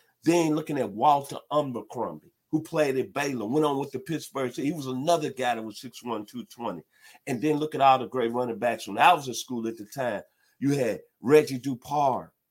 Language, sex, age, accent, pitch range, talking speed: English, male, 50-69, American, 130-160 Hz, 210 wpm